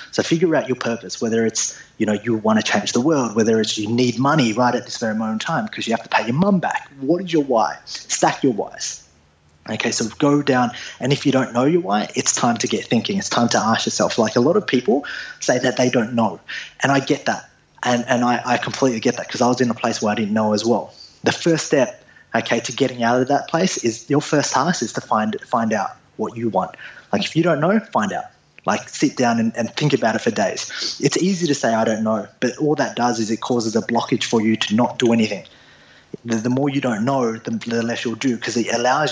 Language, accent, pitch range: English, Australian, 115-150 Hz